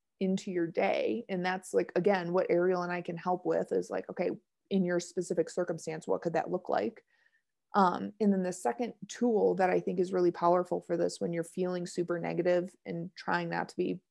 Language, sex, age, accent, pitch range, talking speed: English, female, 30-49, American, 175-210 Hz, 215 wpm